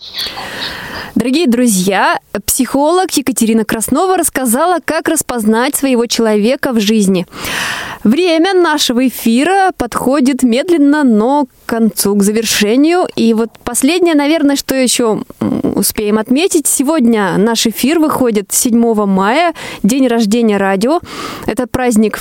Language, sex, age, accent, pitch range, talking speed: Russian, female, 20-39, native, 225-295 Hz, 110 wpm